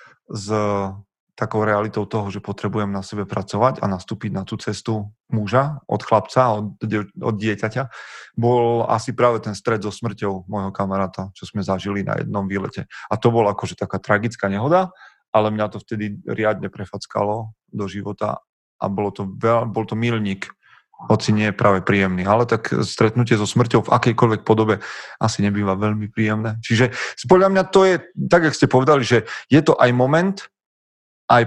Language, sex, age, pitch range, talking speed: Slovak, male, 30-49, 100-120 Hz, 170 wpm